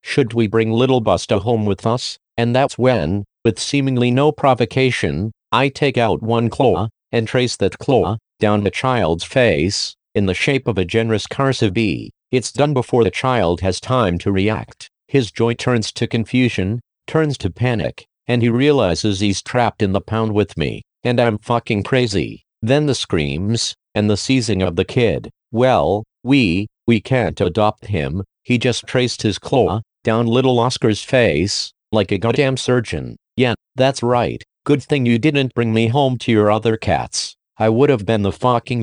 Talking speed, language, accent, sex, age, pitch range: 180 wpm, English, American, male, 50-69, 105-130 Hz